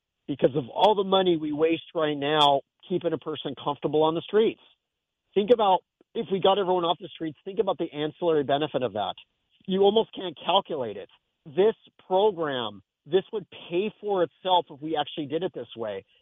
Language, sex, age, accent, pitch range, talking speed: English, male, 40-59, American, 150-180 Hz, 190 wpm